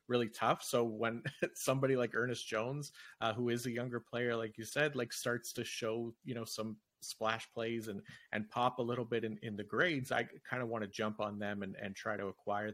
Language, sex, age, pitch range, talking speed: English, male, 30-49, 100-115 Hz, 230 wpm